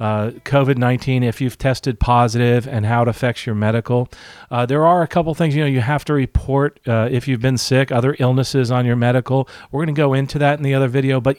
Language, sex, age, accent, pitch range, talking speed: English, male, 40-59, American, 115-145 Hz, 230 wpm